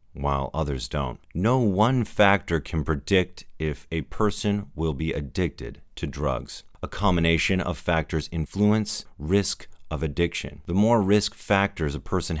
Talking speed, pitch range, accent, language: 145 wpm, 75-95 Hz, American, English